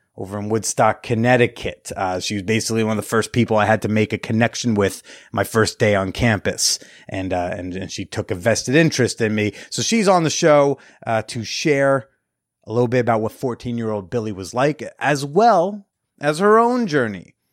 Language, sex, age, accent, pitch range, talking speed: English, male, 30-49, American, 110-150 Hz, 210 wpm